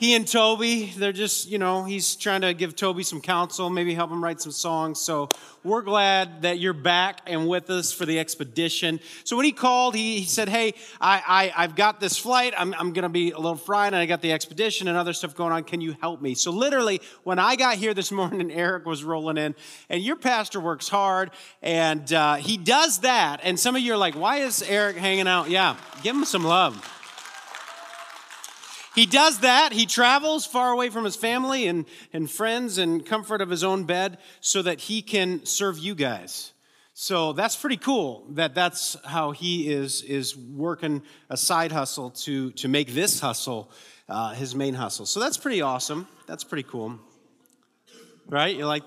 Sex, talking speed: male, 200 wpm